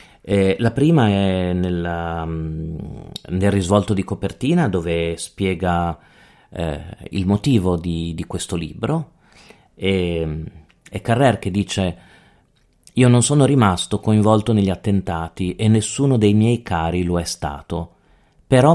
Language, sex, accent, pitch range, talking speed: Italian, male, native, 90-120 Hz, 120 wpm